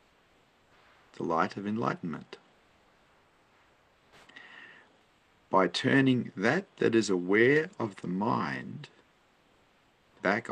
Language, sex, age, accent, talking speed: English, male, 50-69, Australian, 80 wpm